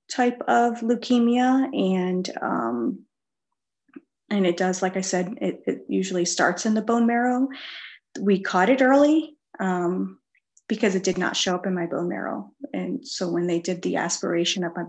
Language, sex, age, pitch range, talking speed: English, female, 30-49, 180-230 Hz, 175 wpm